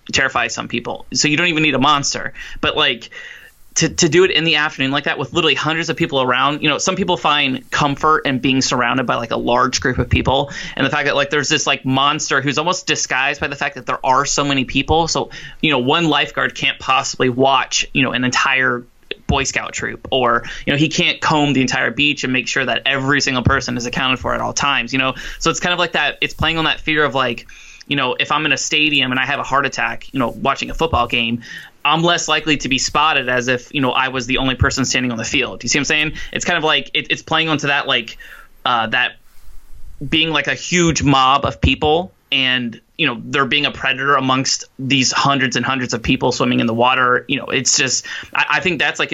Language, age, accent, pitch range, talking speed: English, 20-39, American, 130-155 Hz, 250 wpm